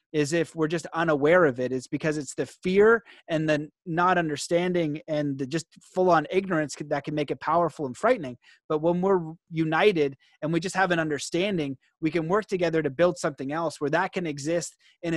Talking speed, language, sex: 205 wpm, English, male